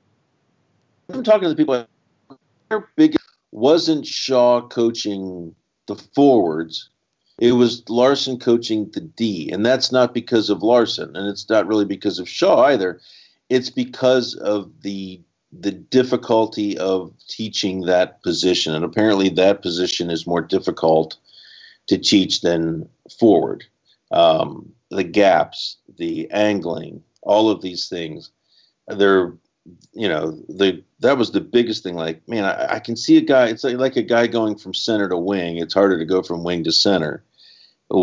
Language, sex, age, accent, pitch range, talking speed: English, male, 50-69, American, 90-125 Hz, 155 wpm